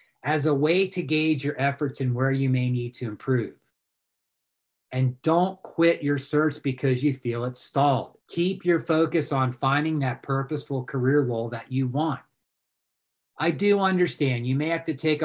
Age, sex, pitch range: 40-59, male, 130-165 Hz